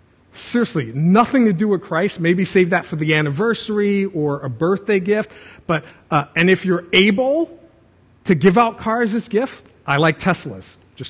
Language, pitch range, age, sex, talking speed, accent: English, 150-210 Hz, 40-59, male, 175 wpm, American